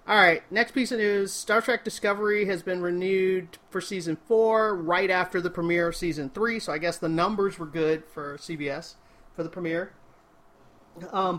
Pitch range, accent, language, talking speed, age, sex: 160-195 Hz, American, English, 185 wpm, 30-49, male